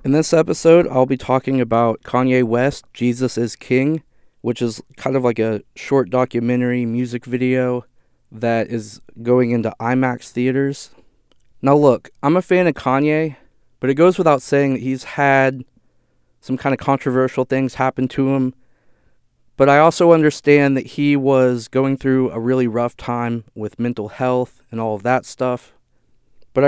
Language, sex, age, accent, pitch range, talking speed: English, male, 20-39, American, 120-145 Hz, 165 wpm